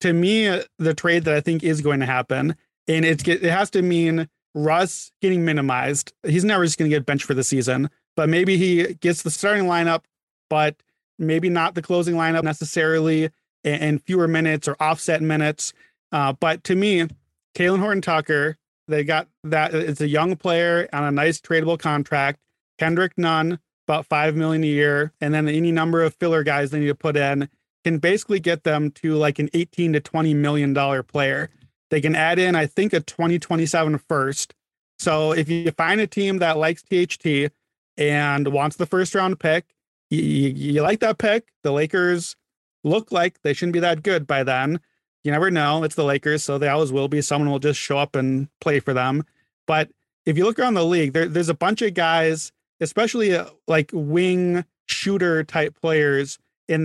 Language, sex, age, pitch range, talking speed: English, male, 30-49, 150-175 Hz, 195 wpm